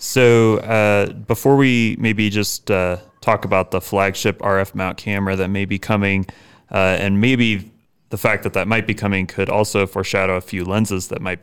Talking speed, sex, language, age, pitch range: 190 wpm, male, English, 30-49, 95-110 Hz